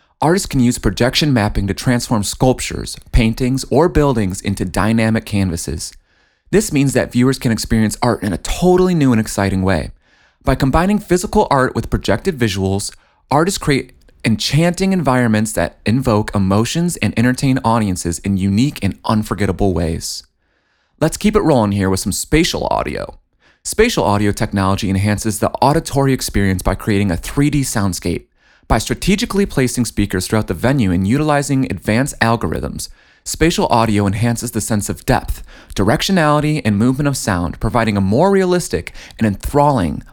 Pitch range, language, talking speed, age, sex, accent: 100-140 Hz, English, 150 wpm, 30-49, male, American